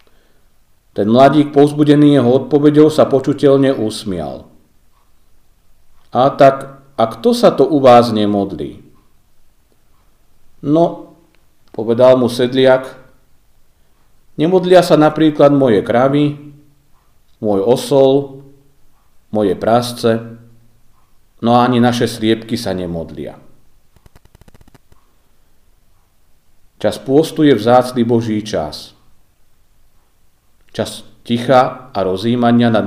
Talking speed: 85 wpm